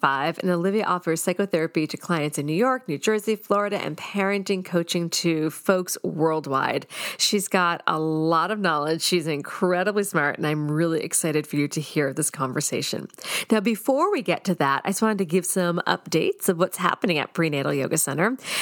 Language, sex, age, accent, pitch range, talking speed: English, female, 40-59, American, 160-215 Hz, 185 wpm